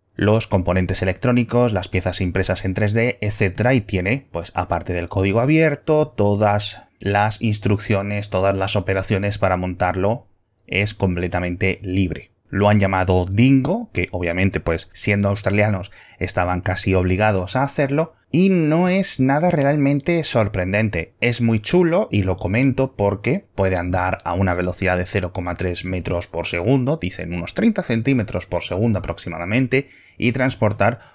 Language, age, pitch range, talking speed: Spanish, 30-49, 90-115 Hz, 140 wpm